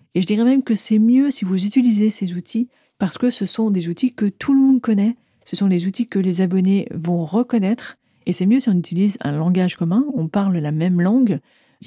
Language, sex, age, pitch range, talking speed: French, female, 40-59, 170-215 Hz, 240 wpm